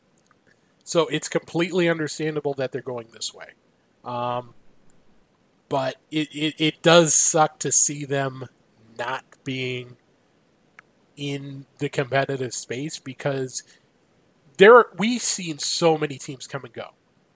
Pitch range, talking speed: 130-160 Hz, 125 wpm